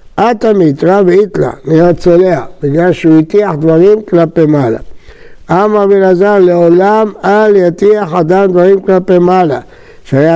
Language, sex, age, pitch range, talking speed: Hebrew, male, 60-79, 155-190 Hz, 125 wpm